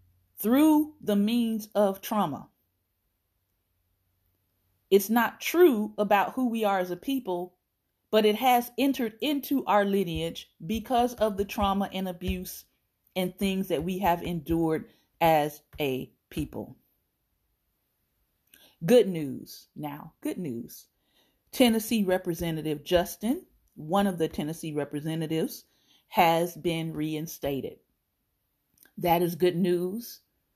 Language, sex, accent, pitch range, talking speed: English, female, American, 165-235 Hz, 110 wpm